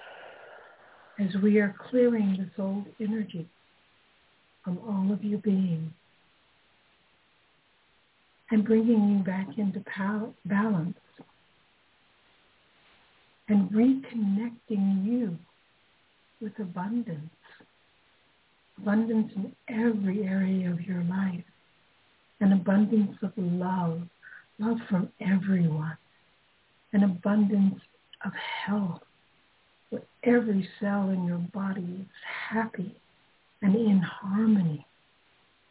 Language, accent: English, American